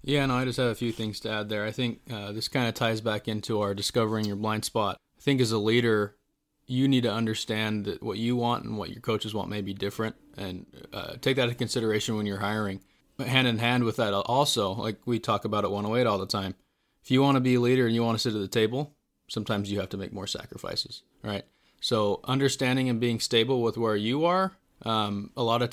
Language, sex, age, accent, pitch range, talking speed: English, male, 20-39, American, 105-120 Hz, 245 wpm